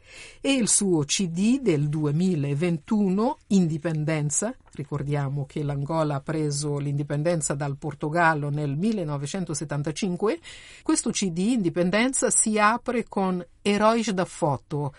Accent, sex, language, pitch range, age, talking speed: native, female, Italian, 155-210 Hz, 50-69, 105 wpm